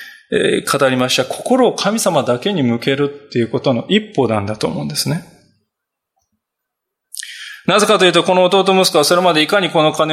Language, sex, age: Japanese, male, 20-39